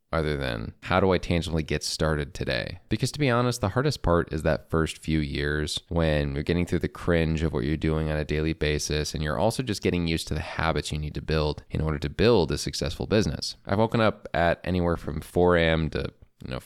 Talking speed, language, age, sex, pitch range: 240 wpm, English, 20-39, male, 75-95 Hz